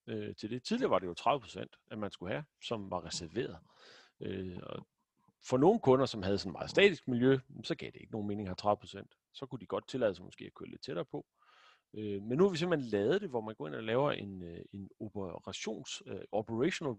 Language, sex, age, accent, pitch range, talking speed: Danish, male, 40-59, native, 100-145 Hz, 230 wpm